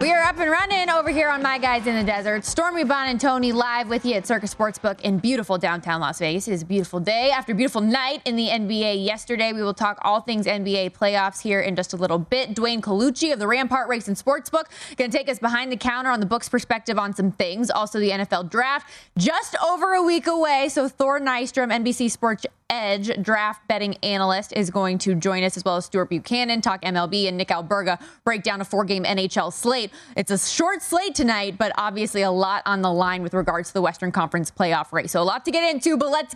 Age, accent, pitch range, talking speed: 20-39, American, 195-265 Hz, 235 wpm